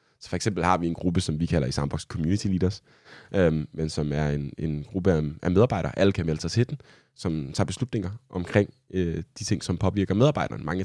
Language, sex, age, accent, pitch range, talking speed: Danish, male, 20-39, native, 80-105 Hz, 225 wpm